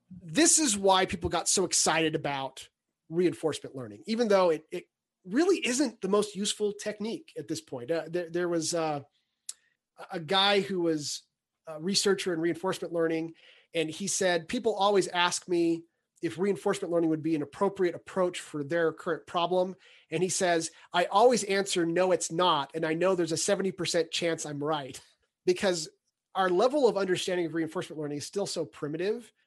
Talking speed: 175 wpm